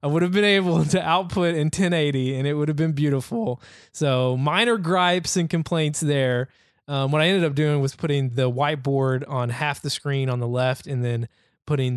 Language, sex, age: English, male, 20-39